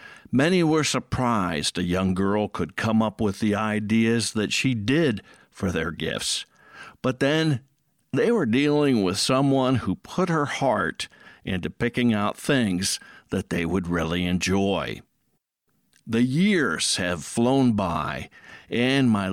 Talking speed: 140 wpm